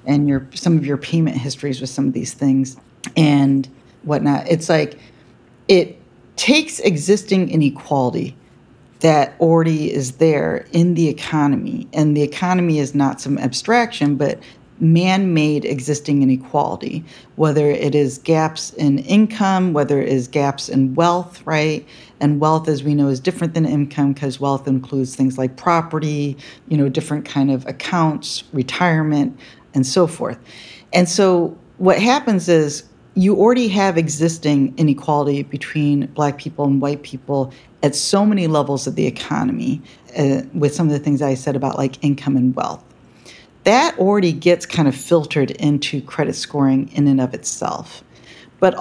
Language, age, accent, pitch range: English, 40-59, American, 140-170 Hz